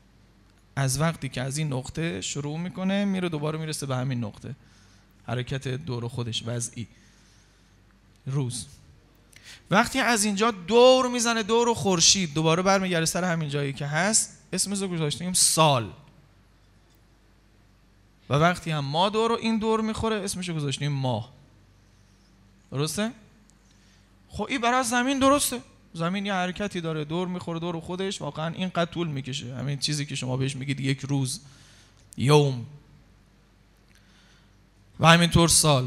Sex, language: male, Persian